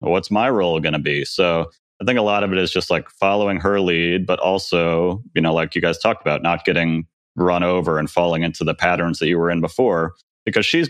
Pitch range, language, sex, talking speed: 85-105 Hz, English, male, 240 wpm